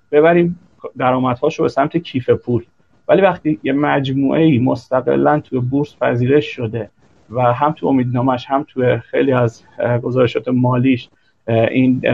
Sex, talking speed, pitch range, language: male, 135 wpm, 120-160 Hz, Persian